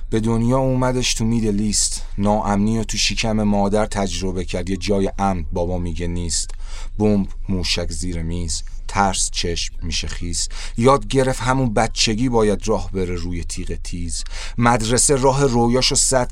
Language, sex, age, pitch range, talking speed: Persian, male, 40-59, 90-115 Hz, 145 wpm